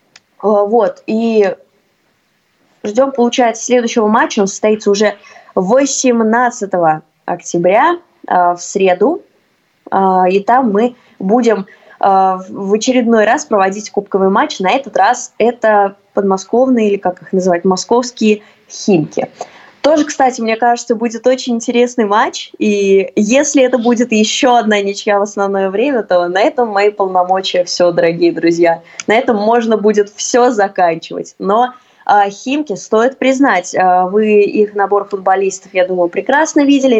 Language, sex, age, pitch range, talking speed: Russian, female, 20-39, 195-245 Hz, 135 wpm